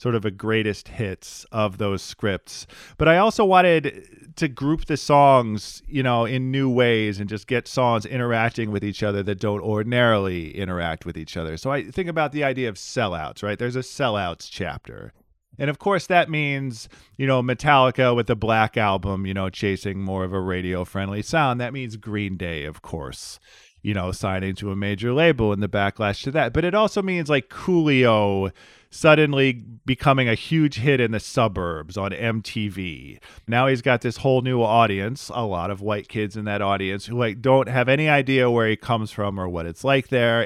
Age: 40-59